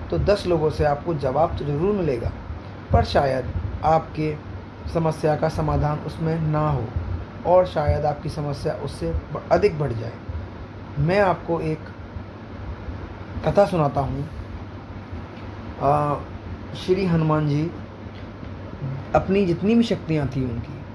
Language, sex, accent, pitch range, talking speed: Hindi, male, native, 105-175 Hz, 115 wpm